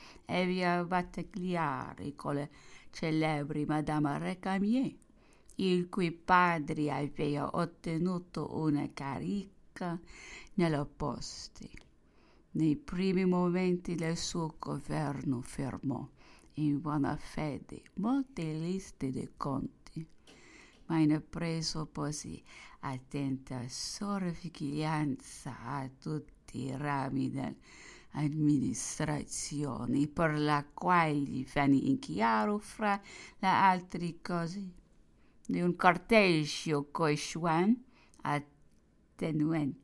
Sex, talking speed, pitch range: female, 90 wpm, 145-180 Hz